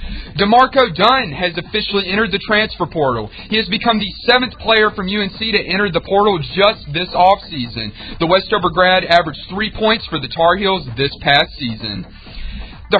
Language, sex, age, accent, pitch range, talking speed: English, male, 40-59, American, 170-210 Hz, 170 wpm